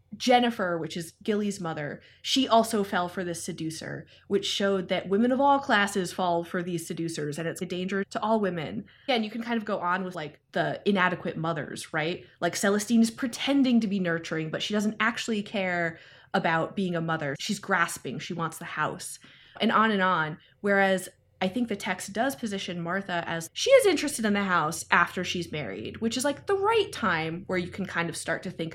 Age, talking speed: 20-39, 210 wpm